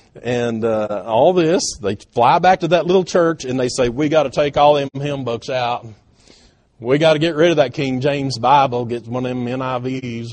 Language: English